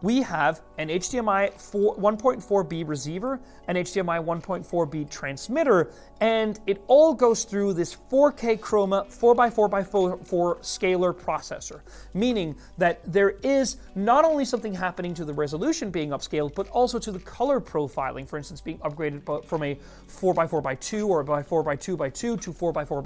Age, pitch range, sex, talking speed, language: 30-49, 170-230 Hz, male, 135 wpm, English